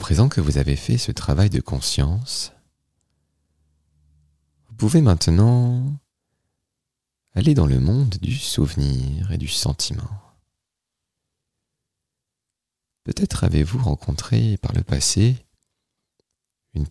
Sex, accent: male, French